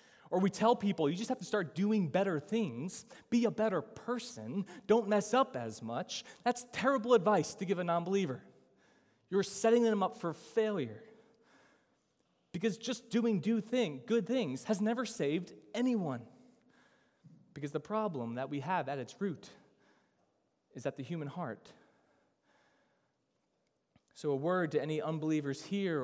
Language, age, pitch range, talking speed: English, 20-39, 140-210 Hz, 145 wpm